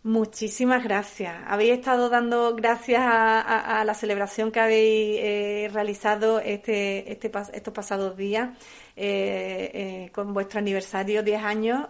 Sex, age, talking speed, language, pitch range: female, 30-49, 135 wpm, Spanish, 200-230 Hz